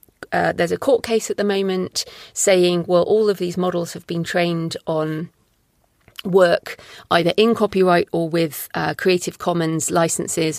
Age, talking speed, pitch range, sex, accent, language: 30-49, 160 wpm, 170-215 Hz, female, British, English